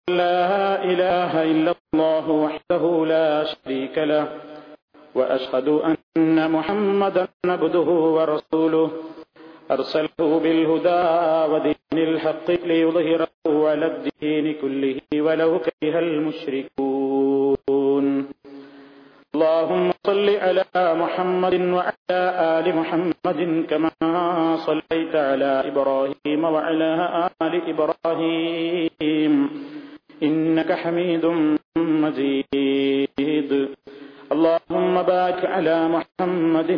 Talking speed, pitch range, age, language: 75 wpm, 150-165 Hz, 40-59, Malayalam